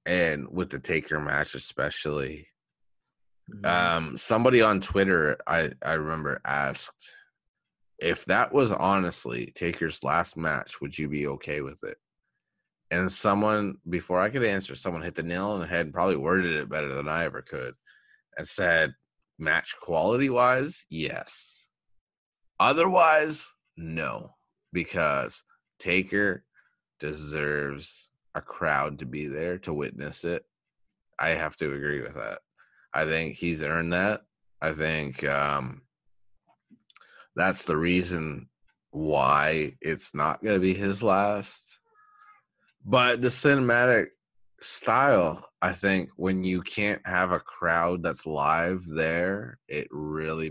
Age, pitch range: 30-49, 75-105 Hz